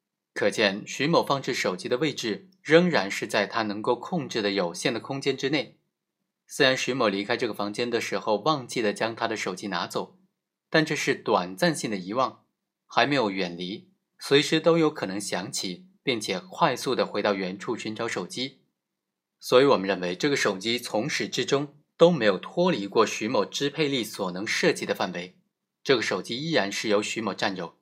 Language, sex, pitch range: Chinese, male, 110-165 Hz